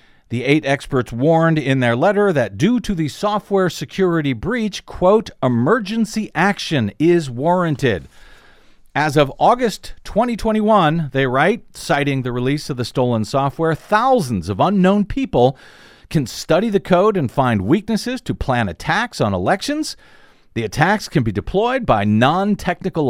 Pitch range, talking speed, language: 135-200 Hz, 145 wpm, English